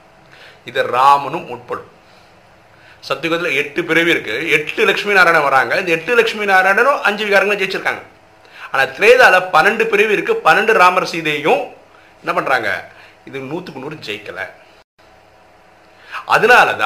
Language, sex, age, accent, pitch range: Tamil, male, 50-69, native, 150-200 Hz